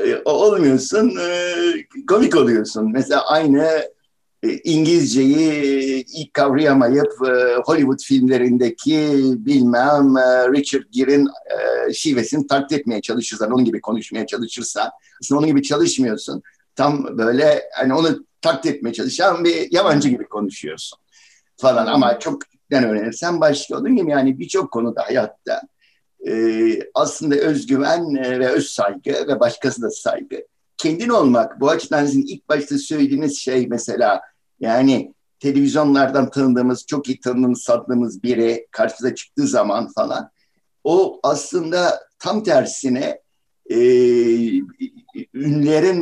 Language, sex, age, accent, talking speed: Turkish, male, 60-79, native, 110 wpm